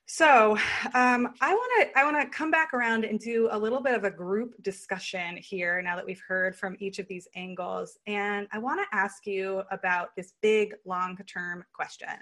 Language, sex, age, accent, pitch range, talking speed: English, female, 20-39, American, 185-230 Hz, 185 wpm